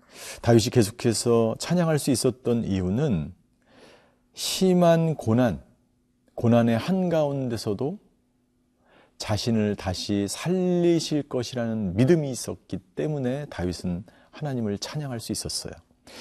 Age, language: 40-59, Korean